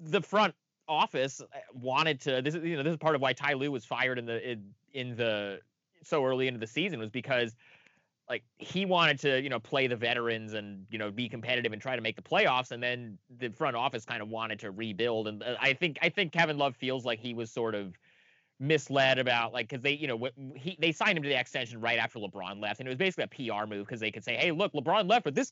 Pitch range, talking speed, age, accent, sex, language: 115-160 Hz, 255 wpm, 30-49, American, male, English